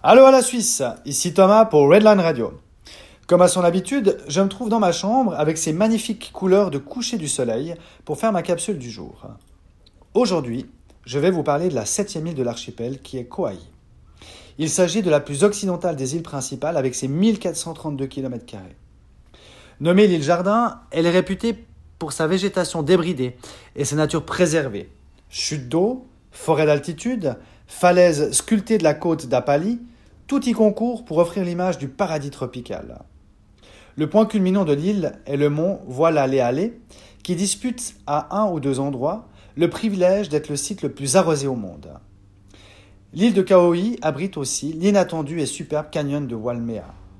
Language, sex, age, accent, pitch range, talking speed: French, male, 30-49, French, 130-190 Hz, 165 wpm